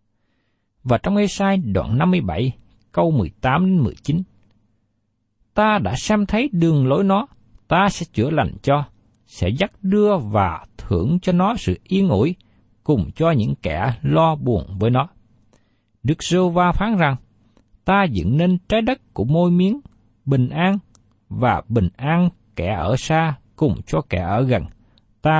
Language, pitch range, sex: Vietnamese, 105-170 Hz, male